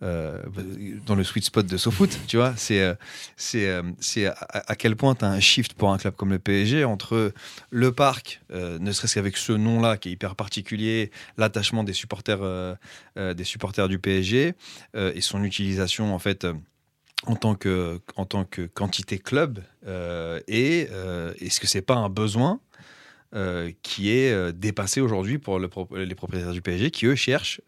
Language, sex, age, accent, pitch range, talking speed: French, male, 30-49, French, 95-120 Hz, 175 wpm